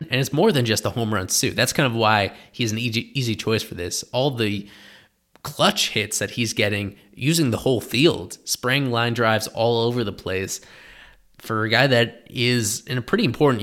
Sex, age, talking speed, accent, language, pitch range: male, 20-39, 205 wpm, American, English, 105-130 Hz